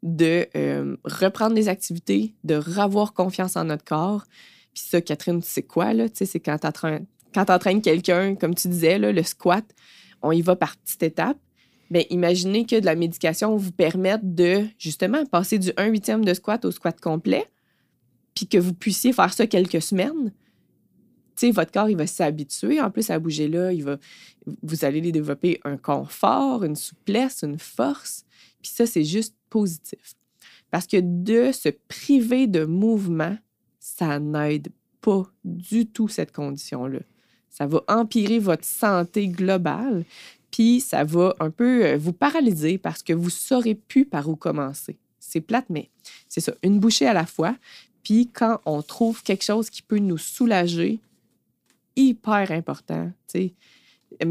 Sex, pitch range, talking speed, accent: female, 160-220 Hz, 165 wpm, Canadian